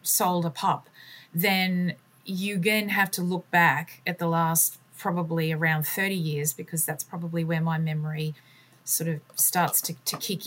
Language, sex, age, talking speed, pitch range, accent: English, female, 30-49, 165 wpm, 160-195 Hz, Australian